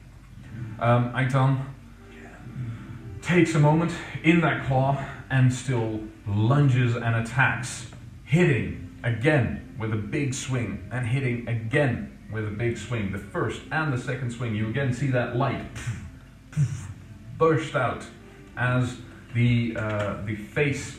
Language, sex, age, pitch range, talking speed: English, male, 30-49, 110-130 Hz, 125 wpm